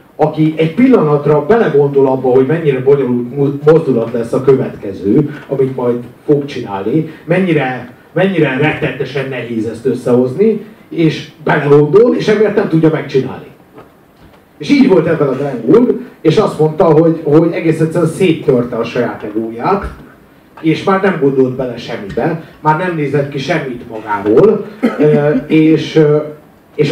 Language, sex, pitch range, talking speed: Hungarian, male, 130-165 Hz, 135 wpm